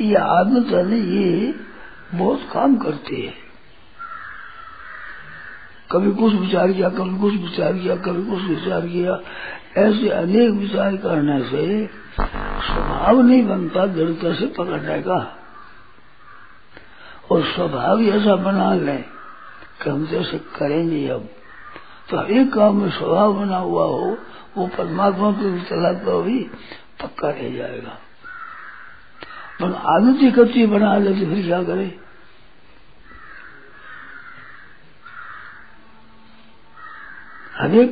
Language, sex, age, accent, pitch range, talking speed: Hindi, male, 60-79, native, 180-225 Hz, 100 wpm